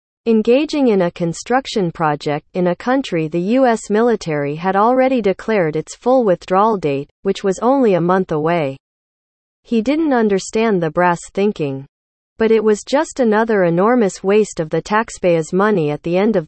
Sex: female